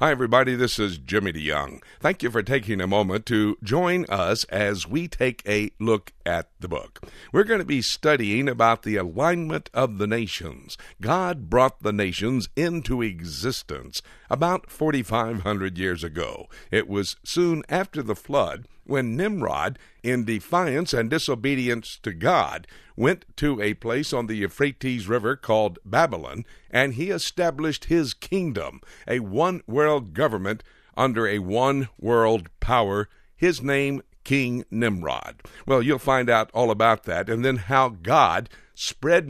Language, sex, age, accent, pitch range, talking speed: English, male, 60-79, American, 110-145 Hz, 145 wpm